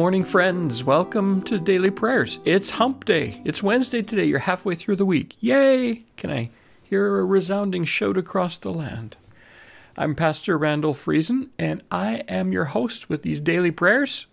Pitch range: 155-210 Hz